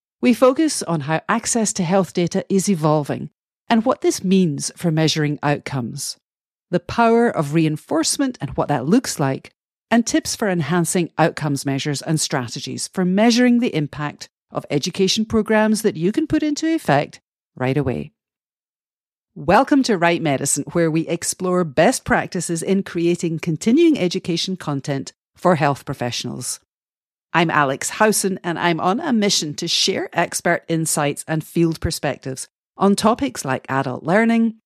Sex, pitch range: female, 145-205 Hz